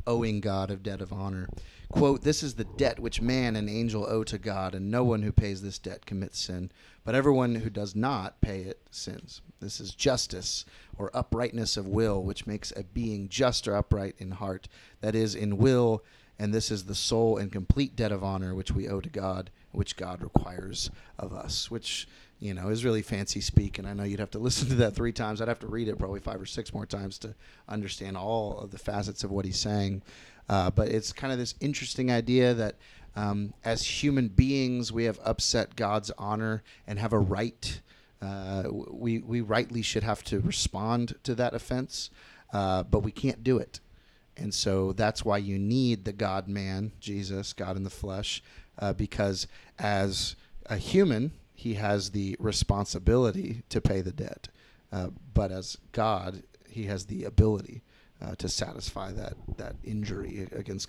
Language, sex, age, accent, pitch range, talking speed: English, male, 30-49, American, 100-115 Hz, 190 wpm